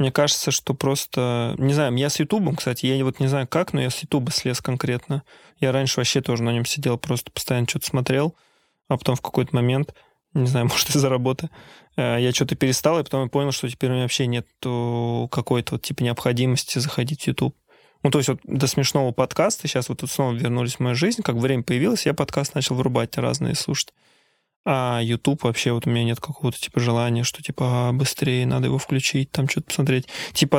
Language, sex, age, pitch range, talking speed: Russian, male, 20-39, 120-145 Hz, 210 wpm